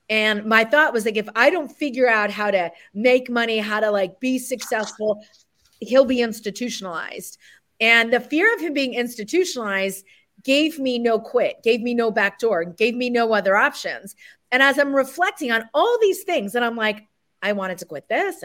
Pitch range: 210-265 Hz